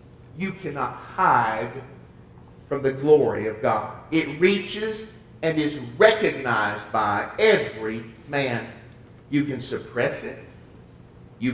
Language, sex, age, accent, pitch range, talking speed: English, male, 50-69, American, 115-180 Hz, 110 wpm